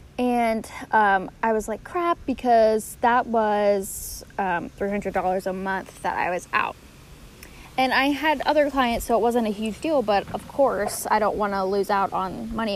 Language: English